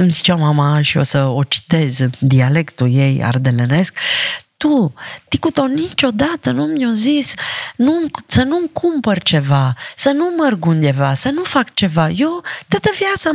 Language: Romanian